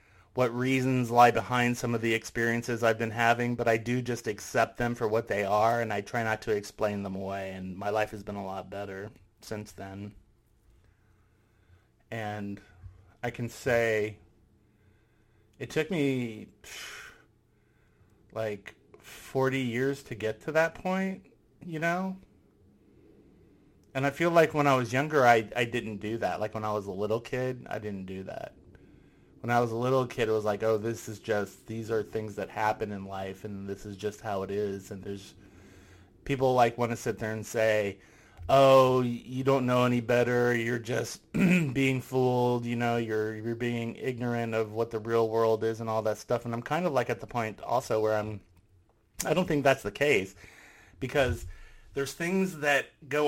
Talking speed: 185 wpm